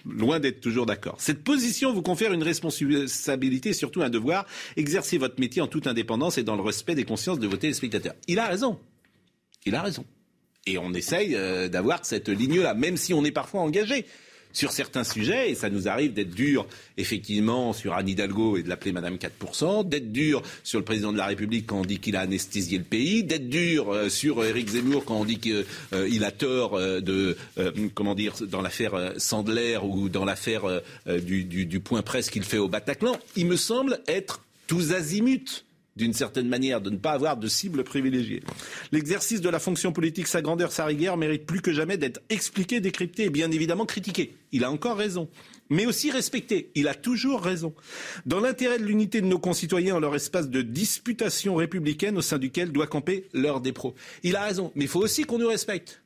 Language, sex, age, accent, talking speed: French, male, 40-59, French, 200 wpm